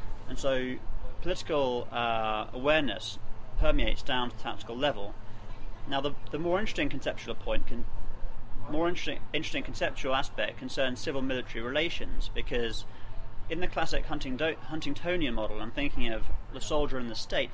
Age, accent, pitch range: 30-49, British, 110-135 Hz